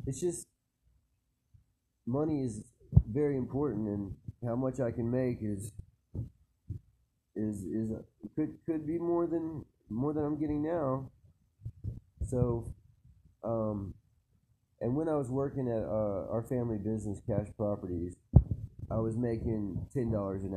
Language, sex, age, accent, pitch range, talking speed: English, male, 30-49, American, 100-125 Hz, 130 wpm